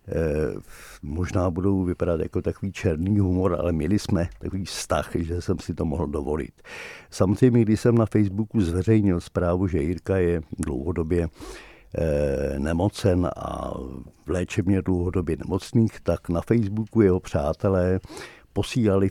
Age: 60-79